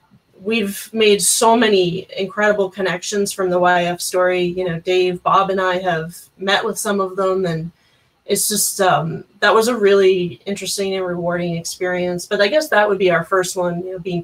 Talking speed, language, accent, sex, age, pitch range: 185 wpm, English, American, female, 30-49, 180-195 Hz